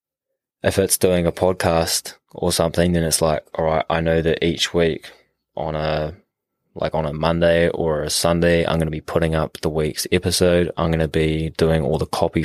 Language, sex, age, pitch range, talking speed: English, male, 20-39, 80-90 Hz, 205 wpm